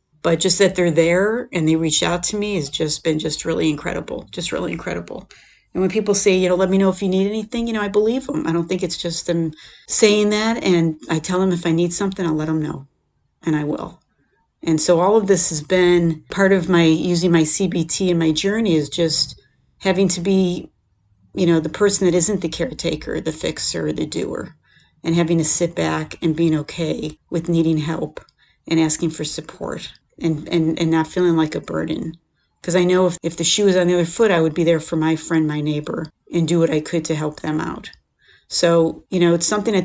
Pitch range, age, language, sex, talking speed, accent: 160-185 Hz, 40-59, English, female, 230 wpm, American